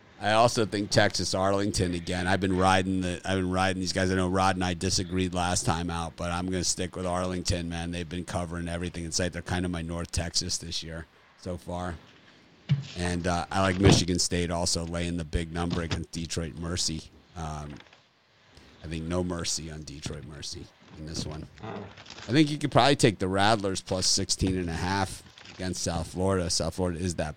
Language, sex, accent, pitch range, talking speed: English, male, American, 85-95 Hz, 205 wpm